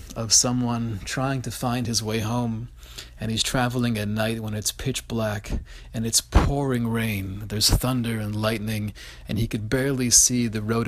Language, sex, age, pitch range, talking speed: English, male, 40-59, 105-130 Hz, 175 wpm